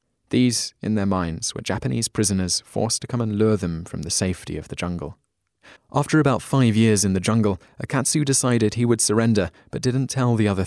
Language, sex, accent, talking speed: English, male, British, 200 wpm